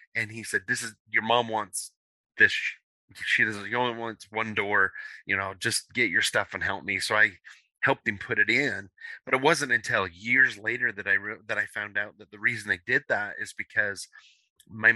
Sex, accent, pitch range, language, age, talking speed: male, American, 95-115 Hz, English, 30-49, 215 wpm